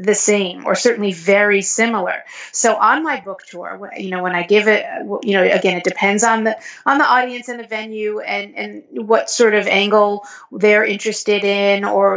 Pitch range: 195-235 Hz